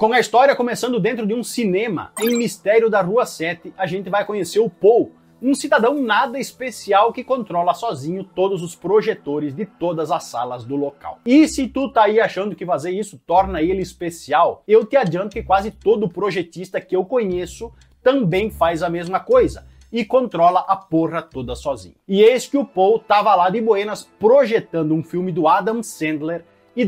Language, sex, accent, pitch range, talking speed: Portuguese, male, Brazilian, 175-235 Hz, 190 wpm